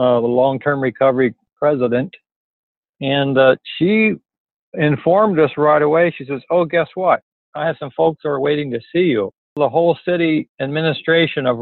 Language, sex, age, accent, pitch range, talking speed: English, male, 60-79, American, 120-150 Hz, 165 wpm